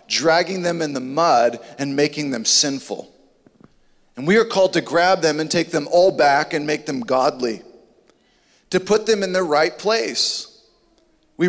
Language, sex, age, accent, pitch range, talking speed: English, male, 30-49, American, 155-210 Hz, 170 wpm